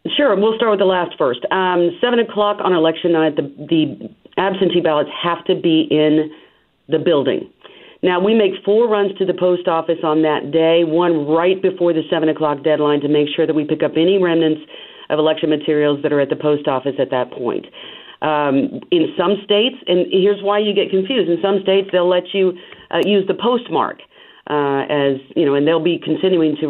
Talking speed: 205 wpm